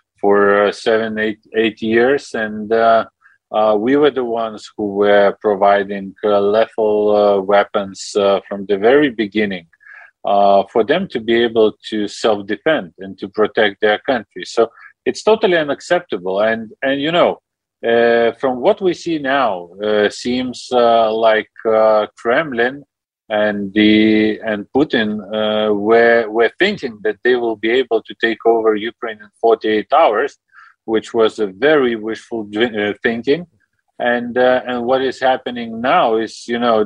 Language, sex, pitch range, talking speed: English, male, 105-125 Hz, 160 wpm